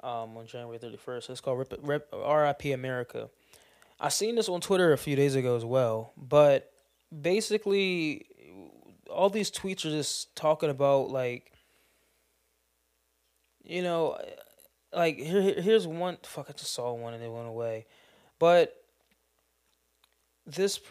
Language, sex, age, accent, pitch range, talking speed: English, male, 20-39, American, 130-155 Hz, 135 wpm